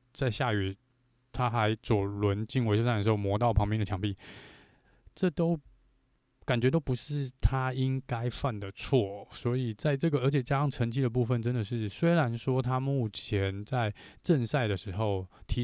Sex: male